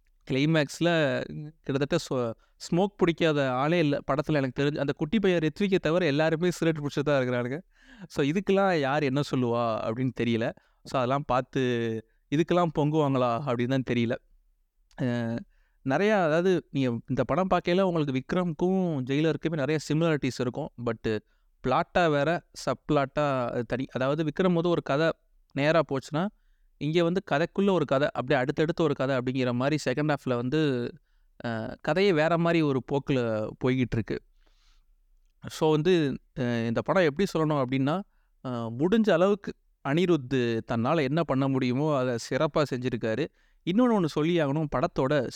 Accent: native